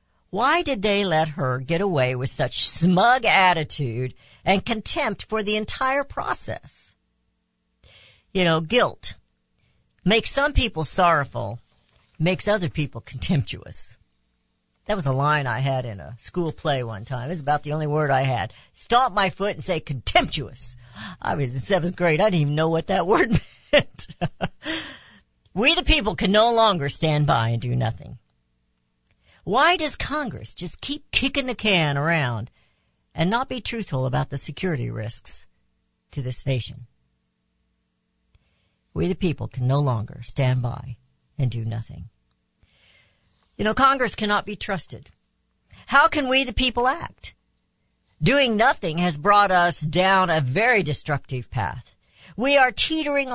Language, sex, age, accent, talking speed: English, female, 60-79, American, 150 wpm